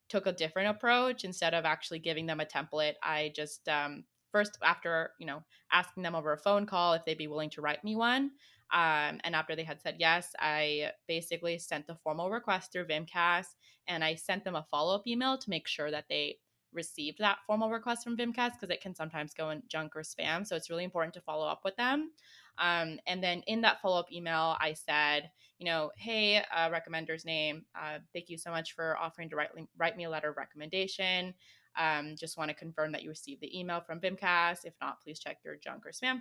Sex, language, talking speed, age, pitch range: female, English, 220 wpm, 20-39, 160-195 Hz